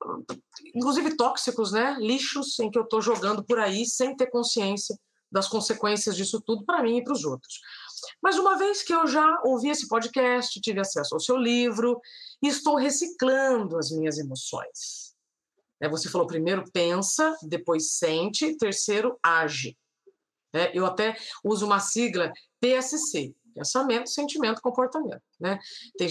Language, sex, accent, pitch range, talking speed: Portuguese, female, Brazilian, 200-275 Hz, 140 wpm